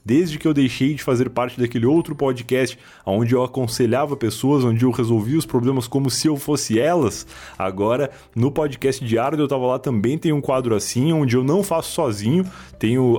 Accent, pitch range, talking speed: Brazilian, 115-150 Hz, 195 wpm